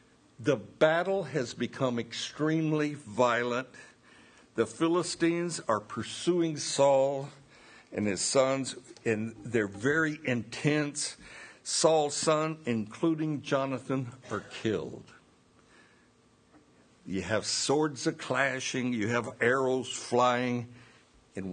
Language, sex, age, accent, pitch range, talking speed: English, male, 60-79, American, 115-155 Hz, 90 wpm